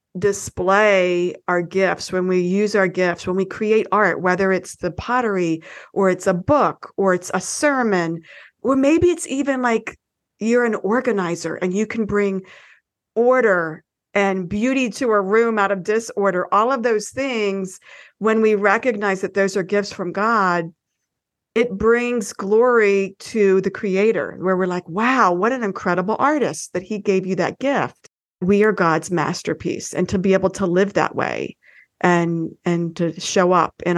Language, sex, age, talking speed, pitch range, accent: English, female, 50-69, 170 wpm, 185-230 Hz, American